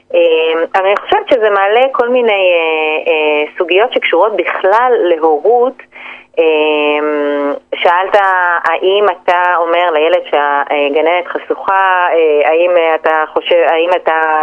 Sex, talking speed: female, 100 wpm